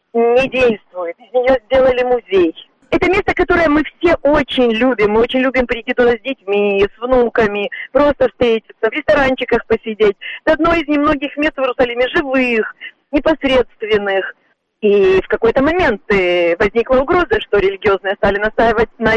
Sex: female